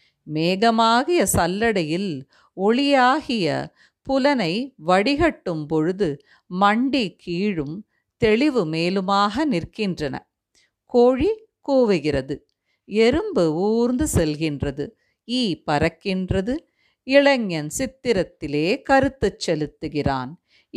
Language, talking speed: Tamil, 65 wpm